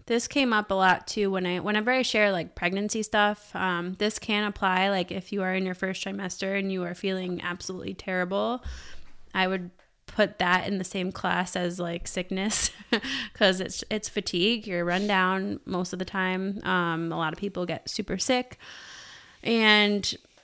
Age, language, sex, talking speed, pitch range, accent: 20-39, English, female, 185 wpm, 185-210 Hz, American